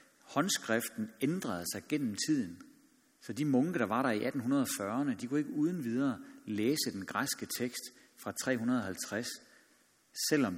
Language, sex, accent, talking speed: Danish, male, native, 140 wpm